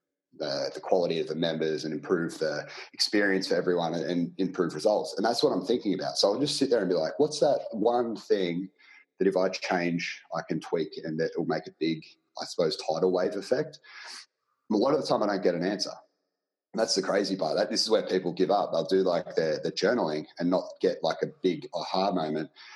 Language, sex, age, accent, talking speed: English, male, 30-49, Australian, 235 wpm